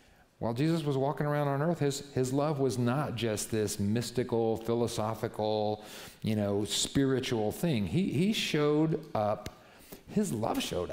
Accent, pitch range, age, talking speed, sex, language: American, 110-150 Hz, 50-69, 150 wpm, male, English